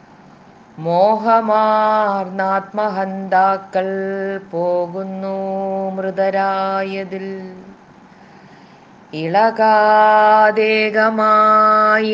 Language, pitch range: Malayalam, 195-215 Hz